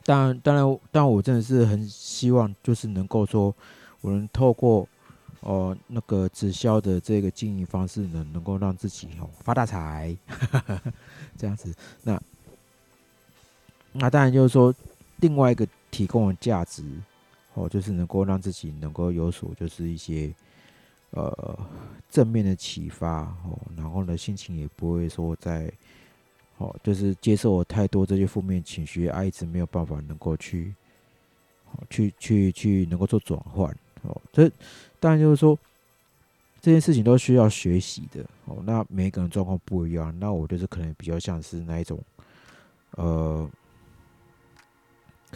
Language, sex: Chinese, male